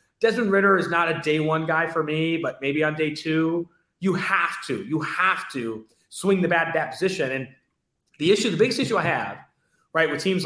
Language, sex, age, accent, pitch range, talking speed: English, male, 30-49, American, 155-200 Hz, 220 wpm